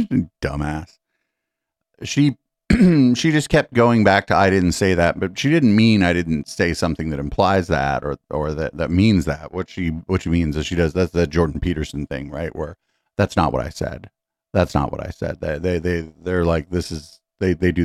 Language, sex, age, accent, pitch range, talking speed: English, male, 40-59, American, 80-105 Hz, 215 wpm